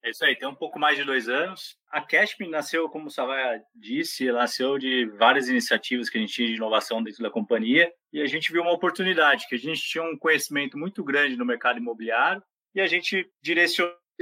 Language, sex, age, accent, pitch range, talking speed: Portuguese, male, 20-39, Brazilian, 130-195 Hz, 215 wpm